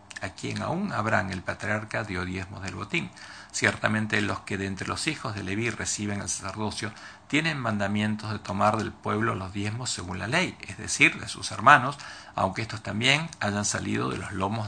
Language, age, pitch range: English, 50-69, 95-115 Hz